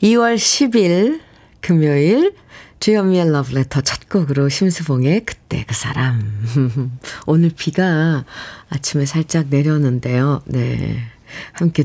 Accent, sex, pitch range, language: native, female, 135-210 Hz, Korean